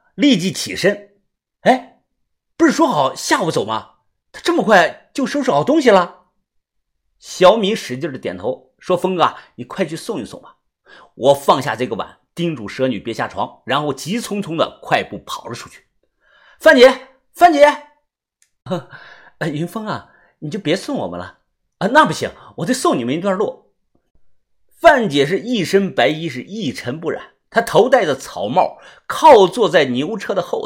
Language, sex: Chinese, male